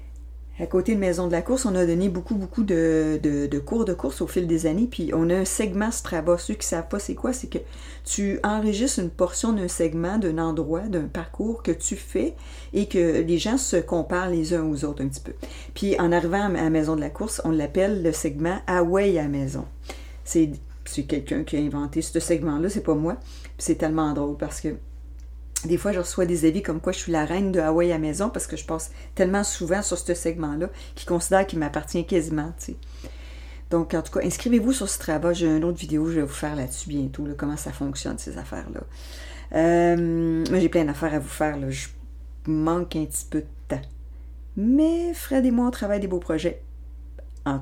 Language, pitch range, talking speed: French, 145-195 Hz, 225 wpm